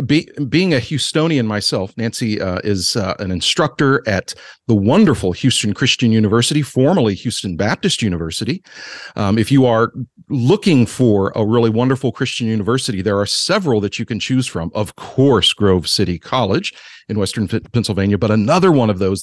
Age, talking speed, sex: 40-59, 160 wpm, male